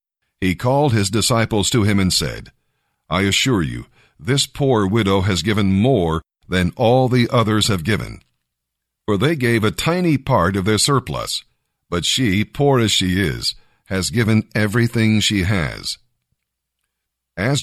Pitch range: 95-120 Hz